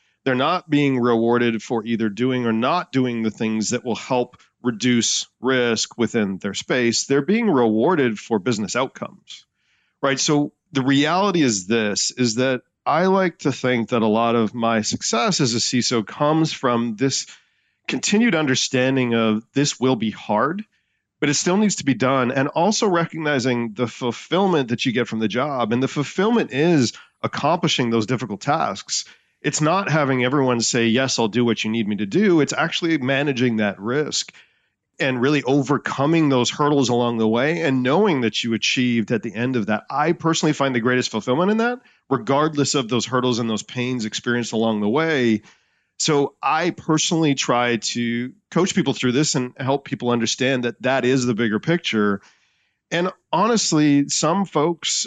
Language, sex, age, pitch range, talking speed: English, male, 40-59, 115-150 Hz, 175 wpm